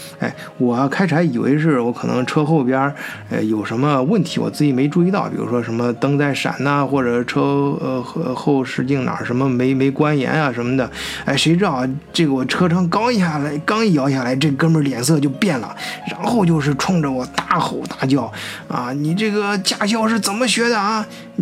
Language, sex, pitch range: Chinese, male, 125-185 Hz